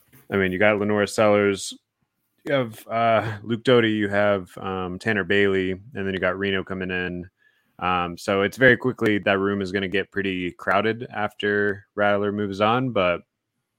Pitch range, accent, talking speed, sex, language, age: 90-105 Hz, American, 180 wpm, male, English, 20-39